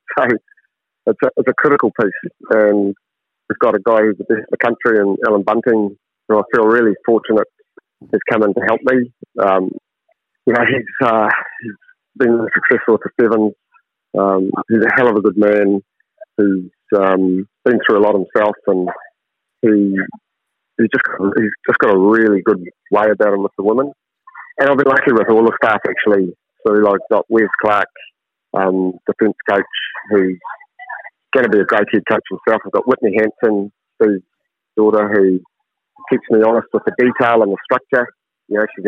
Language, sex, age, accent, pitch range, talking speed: English, male, 40-59, British, 100-125 Hz, 180 wpm